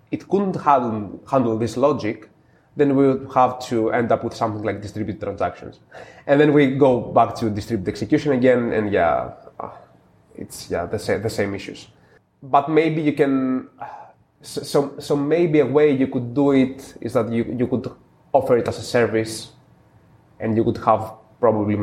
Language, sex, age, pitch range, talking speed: English, male, 20-39, 110-130 Hz, 175 wpm